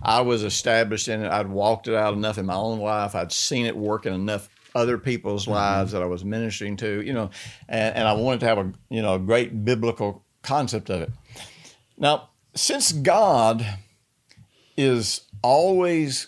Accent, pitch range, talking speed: American, 105-130 Hz, 180 wpm